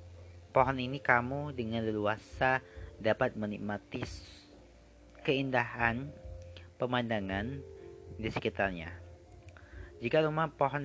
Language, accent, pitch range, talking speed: Indonesian, native, 100-130 Hz, 75 wpm